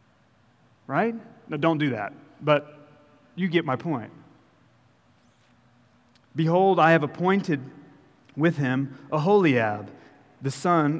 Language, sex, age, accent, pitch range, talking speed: English, male, 40-59, American, 130-160 Hz, 105 wpm